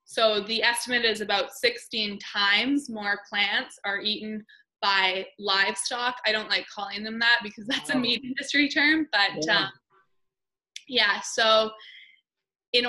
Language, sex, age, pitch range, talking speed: English, female, 20-39, 205-260 Hz, 140 wpm